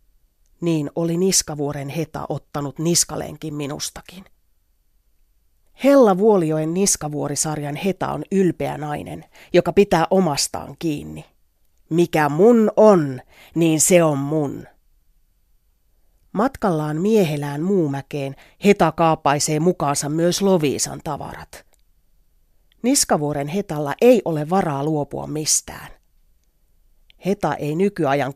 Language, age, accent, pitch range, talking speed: Finnish, 30-49, native, 140-185 Hz, 95 wpm